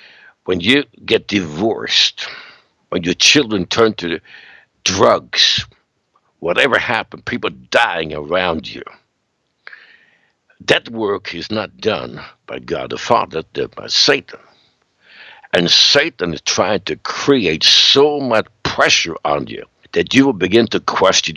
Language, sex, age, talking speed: English, male, 60-79, 125 wpm